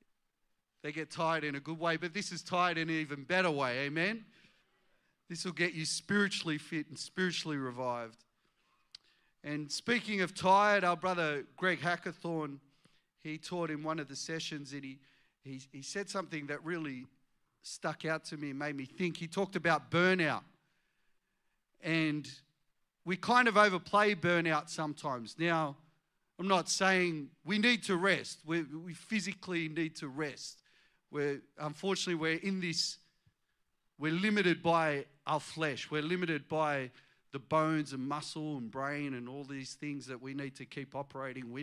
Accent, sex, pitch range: Australian, male, 140-175 Hz